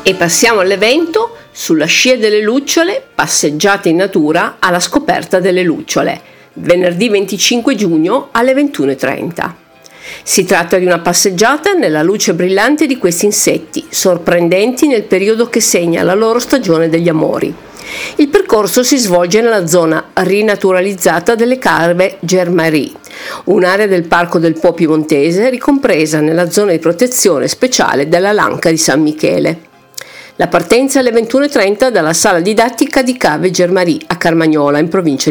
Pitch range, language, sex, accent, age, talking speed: 170-245 Hz, Italian, female, native, 50-69, 140 wpm